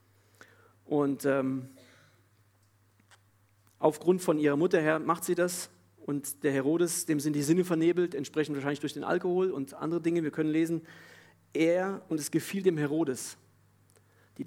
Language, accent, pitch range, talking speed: German, German, 110-160 Hz, 150 wpm